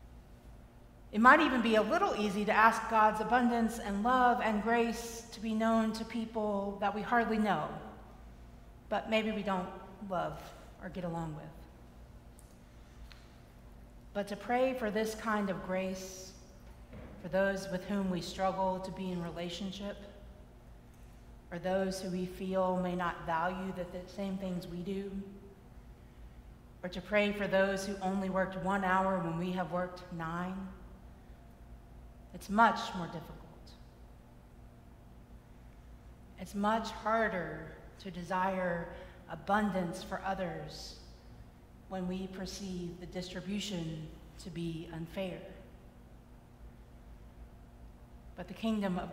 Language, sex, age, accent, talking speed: English, female, 40-59, American, 125 wpm